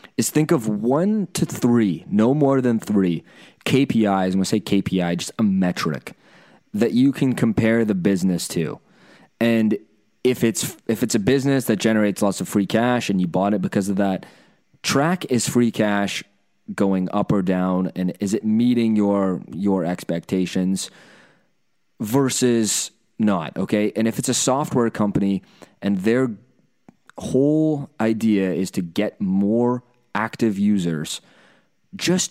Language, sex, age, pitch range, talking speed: English, male, 20-39, 95-120 Hz, 150 wpm